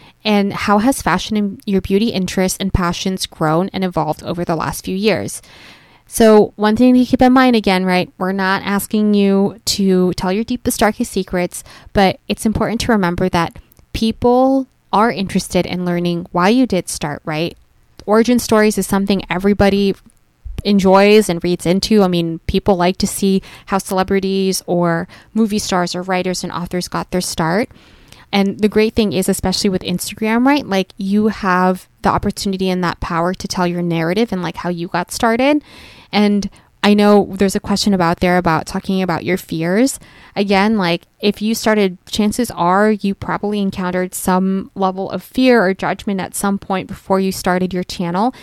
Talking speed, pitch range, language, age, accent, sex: 180 wpm, 180-205 Hz, English, 20-39, American, female